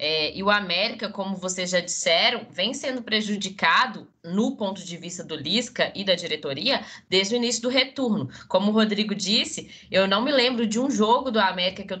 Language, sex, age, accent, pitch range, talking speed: Portuguese, female, 20-39, Brazilian, 185-245 Hz, 200 wpm